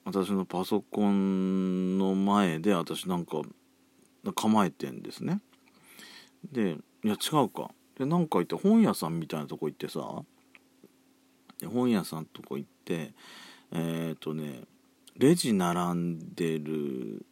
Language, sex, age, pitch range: Japanese, male, 40-59, 85-115 Hz